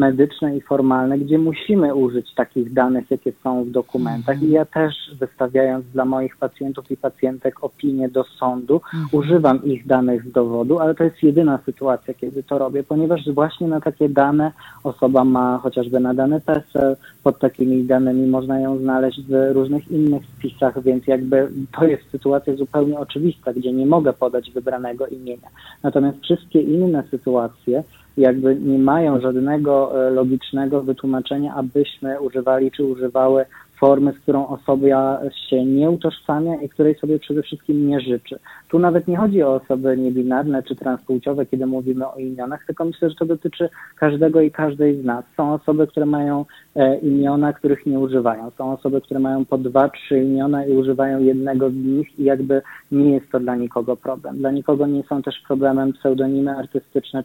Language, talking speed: Polish, 165 wpm